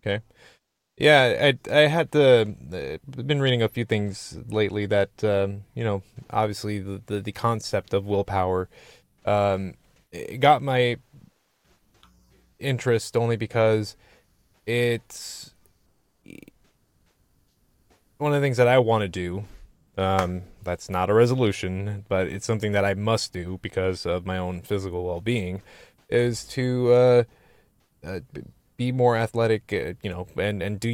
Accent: American